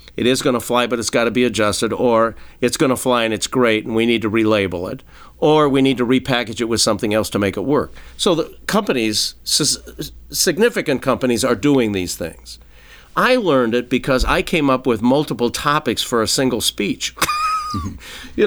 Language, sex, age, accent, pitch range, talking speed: English, male, 50-69, American, 105-135 Hz, 200 wpm